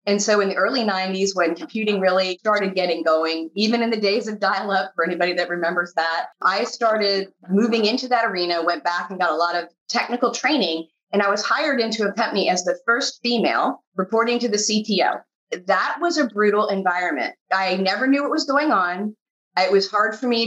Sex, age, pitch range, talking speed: female, 30-49, 185-240 Hz, 205 wpm